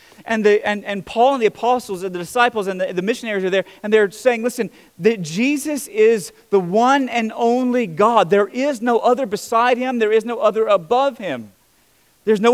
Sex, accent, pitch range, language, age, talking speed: male, American, 210-260 Hz, English, 30-49, 205 wpm